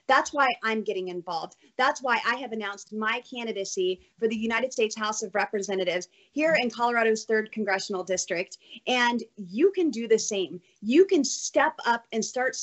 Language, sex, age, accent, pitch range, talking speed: English, female, 30-49, American, 200-250 Hz, 175 wpm